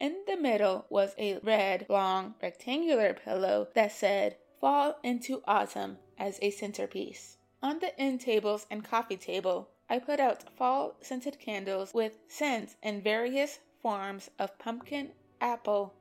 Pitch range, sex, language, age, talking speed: 195-250 Hz, female, English, 20-39, 140 wpm